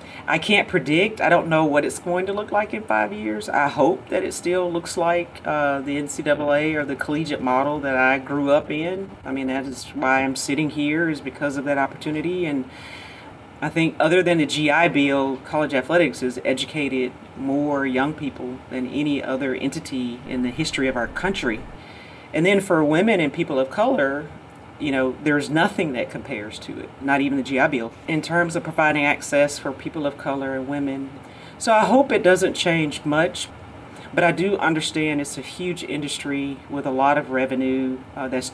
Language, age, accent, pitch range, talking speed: English, 40-59, American, 130-155 Hz, 195 wpm